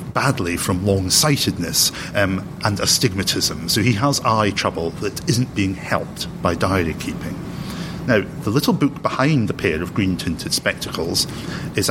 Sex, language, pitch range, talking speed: male, English, 95-125 Hz, 140 wpm